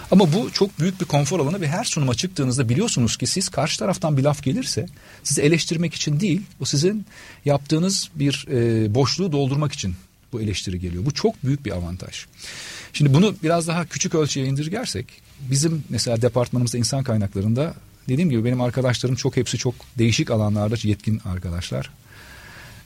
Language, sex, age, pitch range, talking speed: Turkish, male, 40-59, 115-155 Hz, 160 wpm